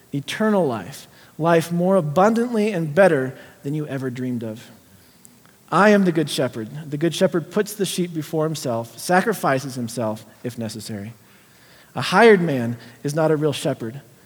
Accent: American